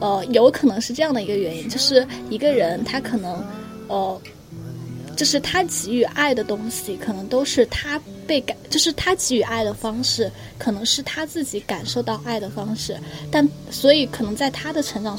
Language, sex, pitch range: Chinese, female, 215-270 Hz